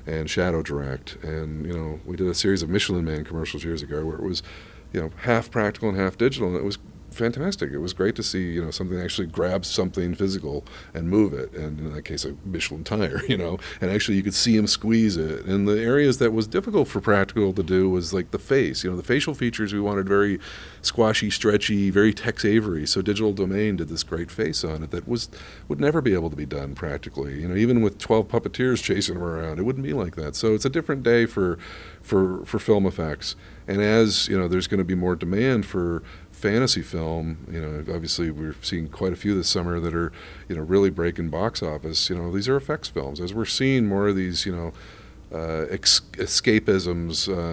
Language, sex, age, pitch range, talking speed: English, male, 50-69, 85-105 Hz, 225 wpm